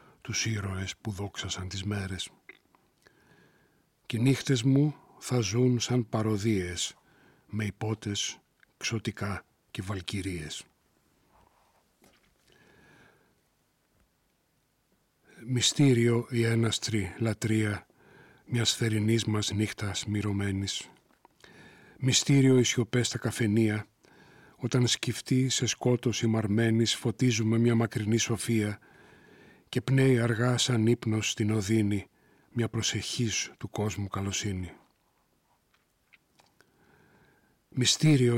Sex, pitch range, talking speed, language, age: male, 105-120 Hz, 85 wpm, Greek, 40-59